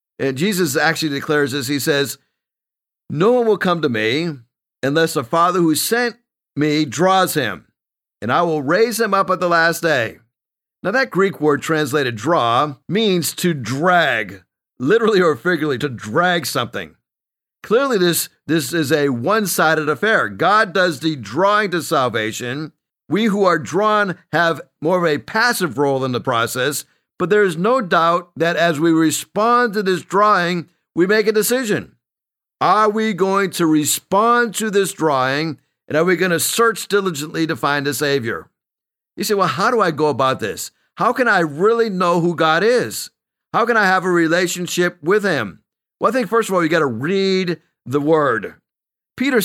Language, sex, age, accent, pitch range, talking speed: English, male, 50-69, American, 150-200 Hz, 175 wpm